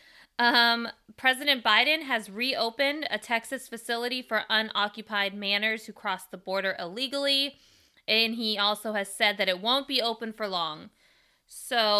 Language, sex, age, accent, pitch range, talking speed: English, female, 20-39, American, 185-230 Hz, 145 wpm